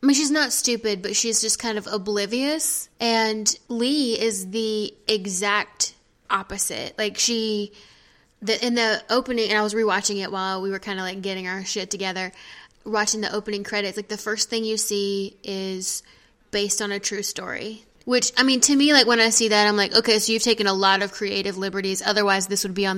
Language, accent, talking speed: English, American, 205 wpm